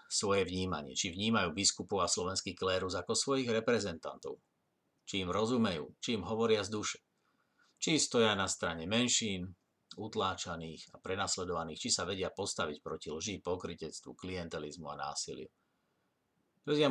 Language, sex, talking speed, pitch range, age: Slovak, male, 135 wpm, 90-115 Hz, 50-69